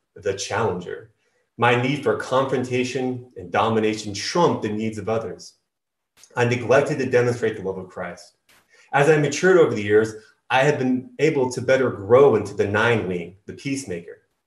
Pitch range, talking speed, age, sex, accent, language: 115-155 Hz, 165 wpm, 30-49, male, American, English